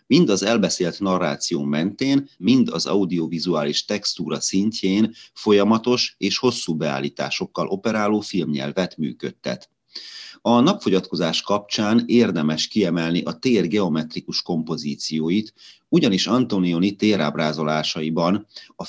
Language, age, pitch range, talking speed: Hungarian, 30-49, 80-110 Hz, 95 wpm